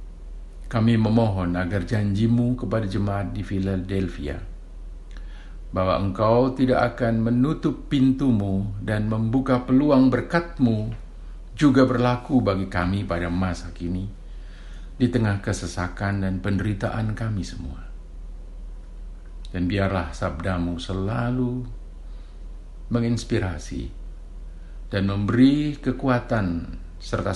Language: Indonesian